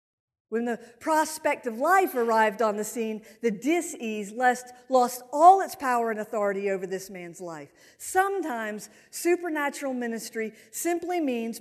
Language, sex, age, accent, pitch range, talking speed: English, female, 50-69, American, 185-270 Hz, 135 wpm